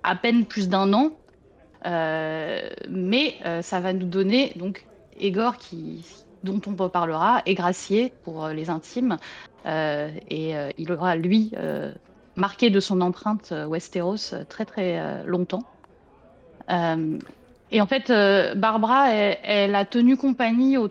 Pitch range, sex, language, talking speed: 170-220 Hz, female, French, 150 wpm